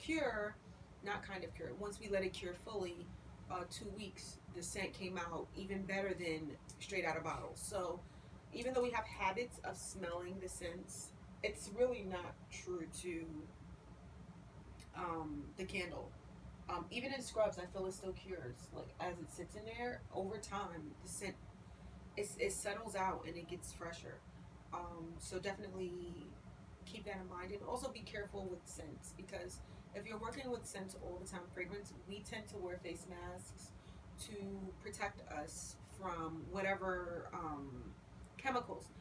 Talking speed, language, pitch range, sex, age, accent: 160 wpm, English, 165-200 Hz, female, 30-49, American